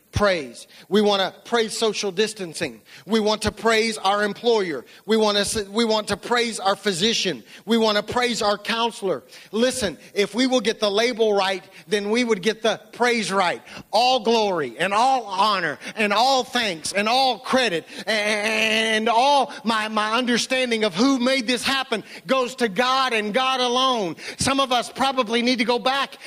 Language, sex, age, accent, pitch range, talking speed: English, male, 40-59, American, 215-255 Hz, 180 wpm